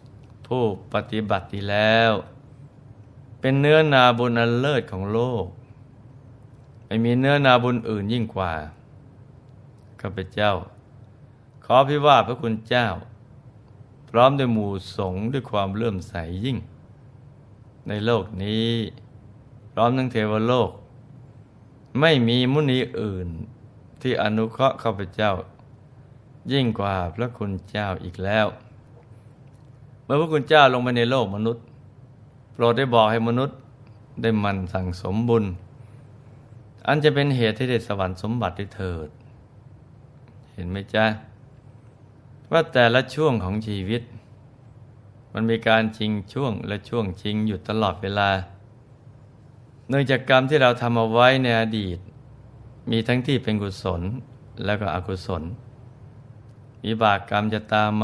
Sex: male